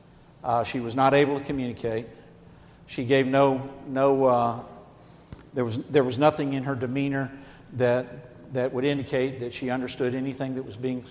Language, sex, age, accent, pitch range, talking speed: English, male, 60-79, American, 125-160 Hz, 165 wpm